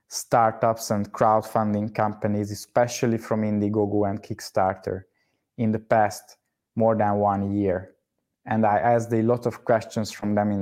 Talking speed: 145 wpm